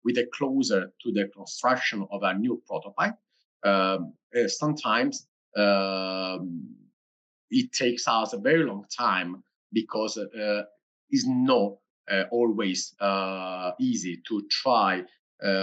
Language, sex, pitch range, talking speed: English, male, 95-145 Hz, 120 wpm